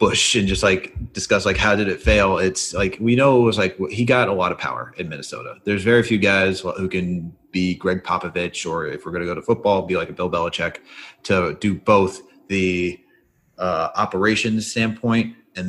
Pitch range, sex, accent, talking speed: 95-115 Hz, male, American, 210 wpm